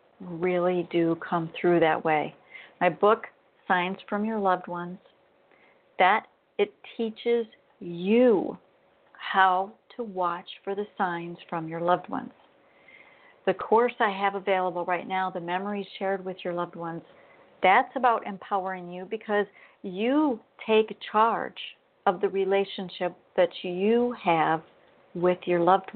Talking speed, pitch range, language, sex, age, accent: 135 wpm, 180-240 Hz, English, female, 50-69, American